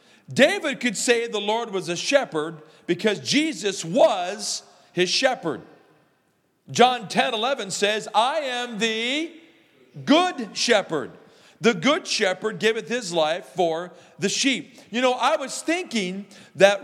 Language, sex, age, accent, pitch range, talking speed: English, male, 40-59, American, 155-225 Hz, 130 wpm